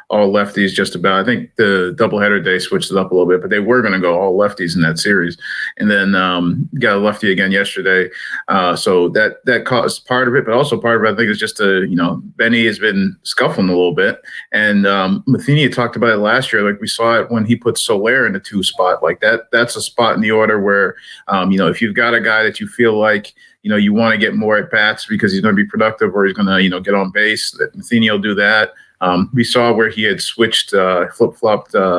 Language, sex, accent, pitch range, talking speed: English, male, American, 100-120 Hz, 265 wpm